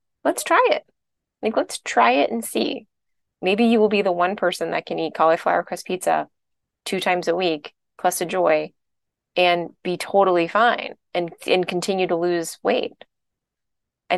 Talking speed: 170 wpm